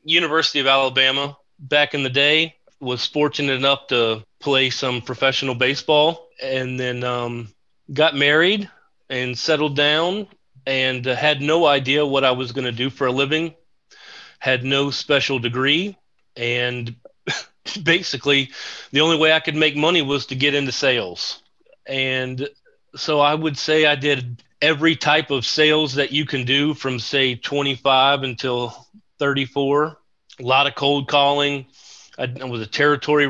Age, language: 40-59, English